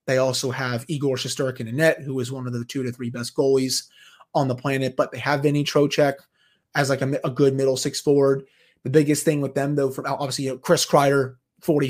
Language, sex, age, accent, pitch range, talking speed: English, male, 30-49, American, 130-155 Hz, 230 wpm